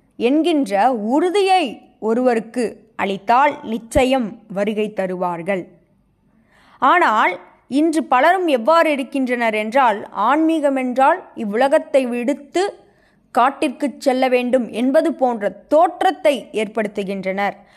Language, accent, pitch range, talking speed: Tamil, native, 215-310 Hz, 80 wpm